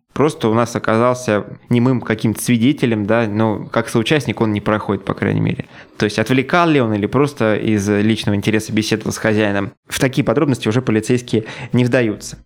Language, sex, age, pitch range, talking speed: Russian, male, 20-39, 110-135 Hz, 180 wpm